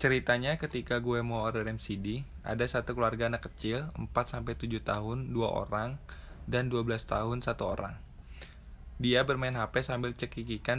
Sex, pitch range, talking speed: male, 105-120 Hz, 145 wpm